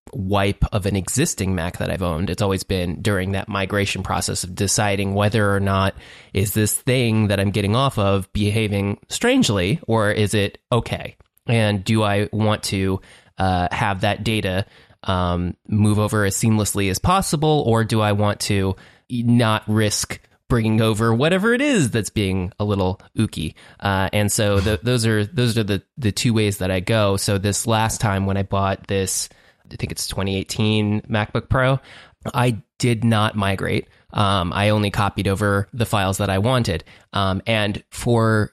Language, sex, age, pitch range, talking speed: English, male, 20-39, 100-120 Hz, 175 wpm